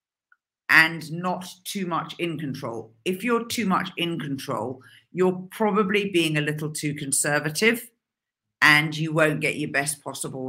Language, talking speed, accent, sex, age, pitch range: English, 150 wpm, British, female, 50-69, 145-195 Hz